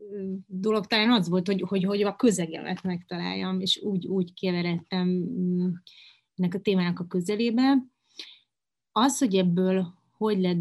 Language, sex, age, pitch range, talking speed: Hungarian, female, 30-49, 175-205 Hz, 135 wpm